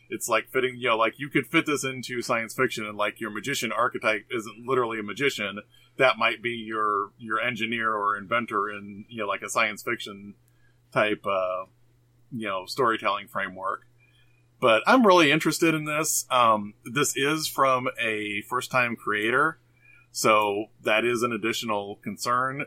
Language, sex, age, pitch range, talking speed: English, male, 30-49, 105-125 Hz, 165 wpm